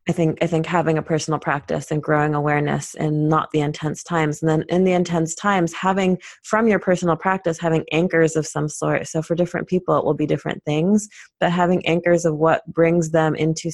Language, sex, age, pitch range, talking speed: English, female, 30-49, 150-175 Hz, 215 wpm